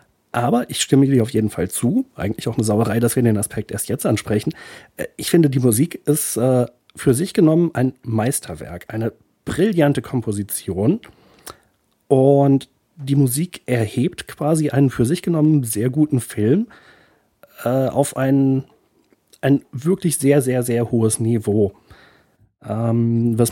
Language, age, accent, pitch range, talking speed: German, 40-59, German, 115-145 Hz, 140 wpm